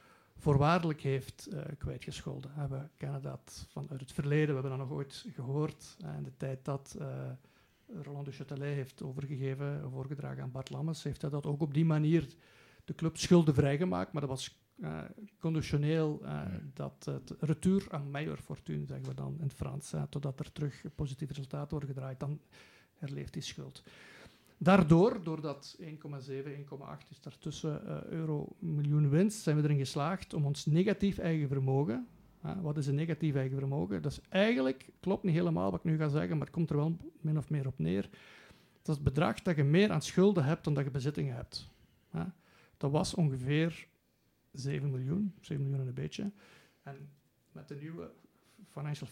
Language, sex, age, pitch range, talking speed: Dutch, male, 50-69, 140-160 Hz, 180 wpm